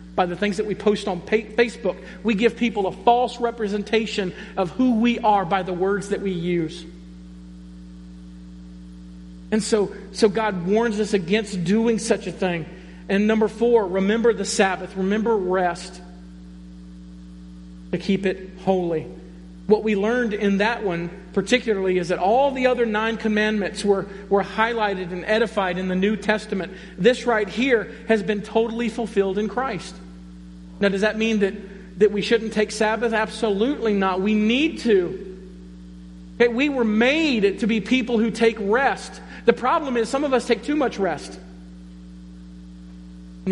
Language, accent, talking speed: English, American, 155 wpm